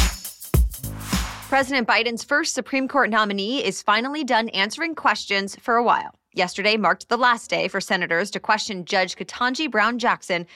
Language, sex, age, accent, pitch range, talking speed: English, female, 20-39, American, 190-245 Hz, 150 wpm